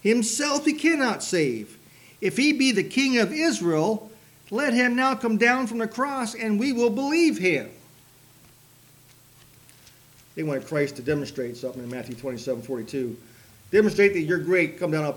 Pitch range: 135-205 Hz